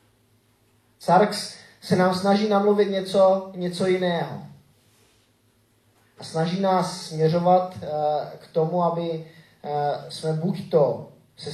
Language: Czech